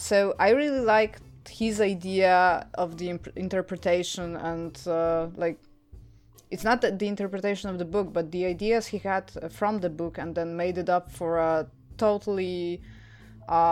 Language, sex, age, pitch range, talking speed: Polish, female, 20-39, 165-205 Hz, 165 wpm